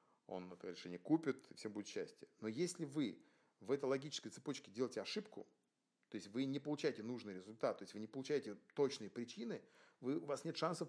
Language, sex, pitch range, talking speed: Russian, male, 110-155 Hz, 195 wpm